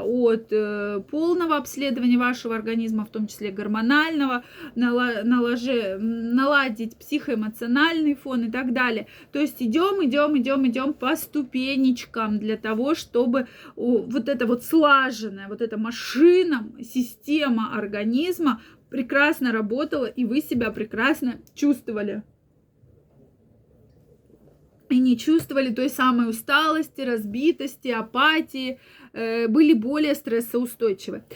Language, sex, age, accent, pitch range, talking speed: Russian, female, 20-39, native, 230-290 Hz, 105 wpm